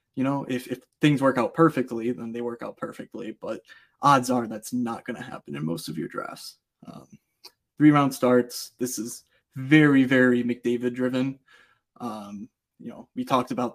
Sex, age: male, 20-39